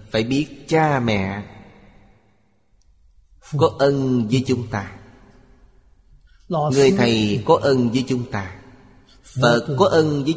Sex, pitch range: male, 110-135 Hz